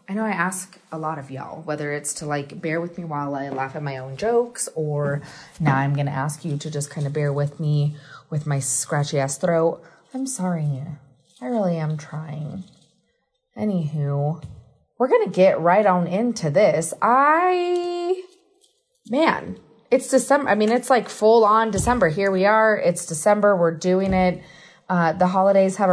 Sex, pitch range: female, 150-195 Hz